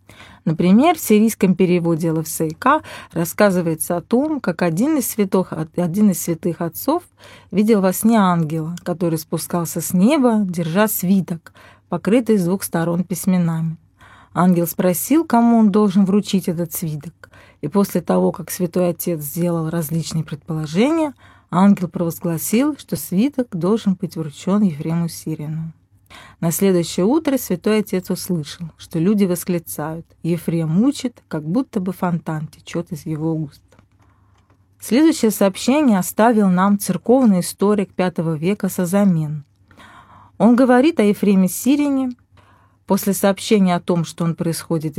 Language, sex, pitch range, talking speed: Russian, female, 165-215 Hz, 130 wpm